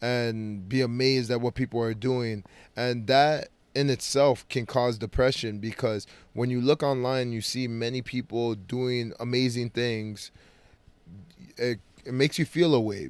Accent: American